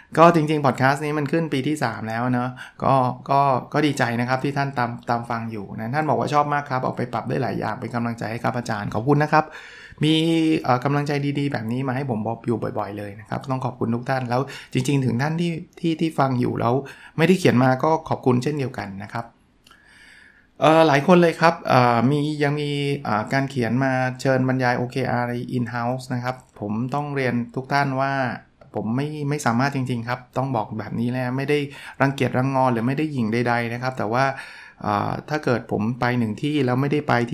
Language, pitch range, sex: Thai, 115-145 Hz, male